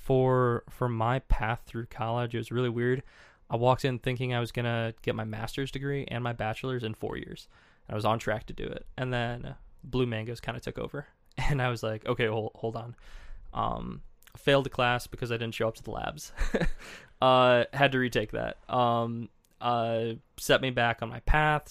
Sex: male